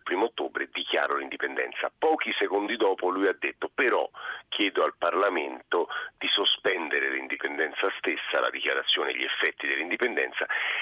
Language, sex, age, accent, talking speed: Italian, male, 40-59, native, 135 wpm